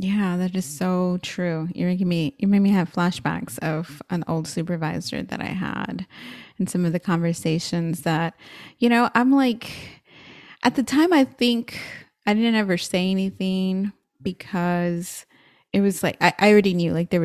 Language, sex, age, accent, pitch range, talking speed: English, female, 20-39, American, 170-200 Hz, 175 wpm